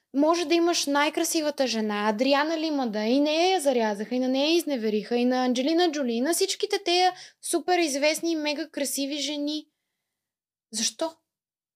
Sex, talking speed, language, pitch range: female, 155 wpm, Bulgarian, 240-330 Hz